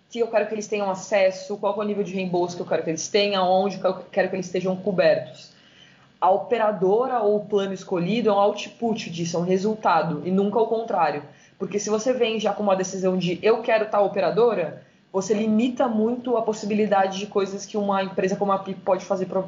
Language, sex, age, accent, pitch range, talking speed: Portuguese, female, 20-39, Brazilian, 190-220 Hz, 220 wpm